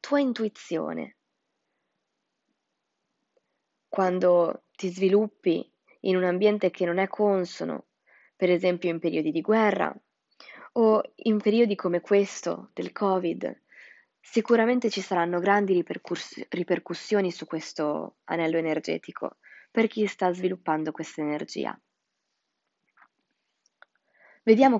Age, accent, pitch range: 20-39, native, 170-210 Hz